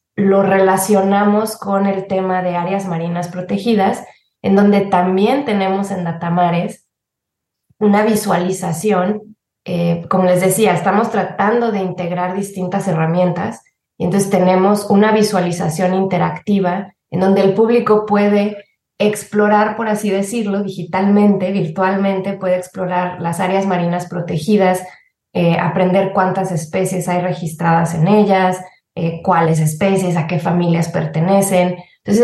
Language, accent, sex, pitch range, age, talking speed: Spanish, Mexican, female, 180-205 Hz, 20-39, 125 wpm